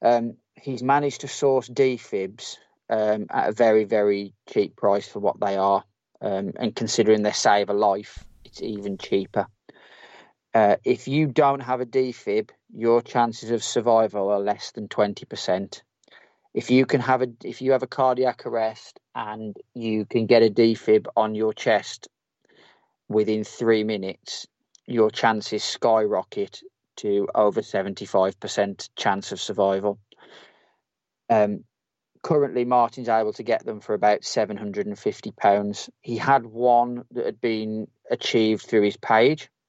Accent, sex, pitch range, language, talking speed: British, male, 105-125 Hz, English, 145 wpm